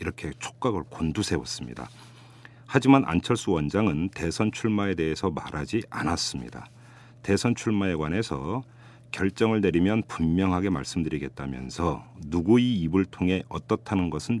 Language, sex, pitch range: Korean, male, 80-120 Hz